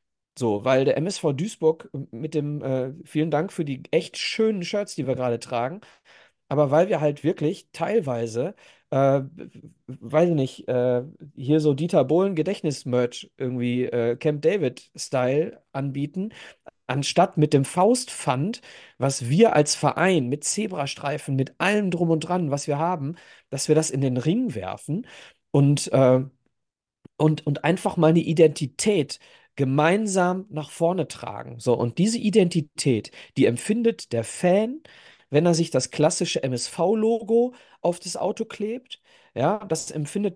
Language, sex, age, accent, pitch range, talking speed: German, male, 40-59, German, 135-185 Hz, 145 wpm